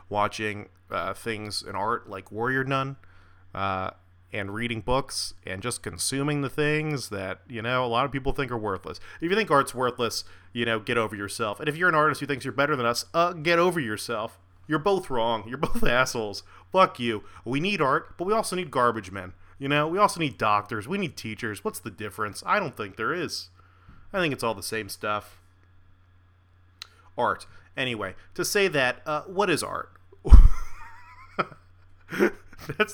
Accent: American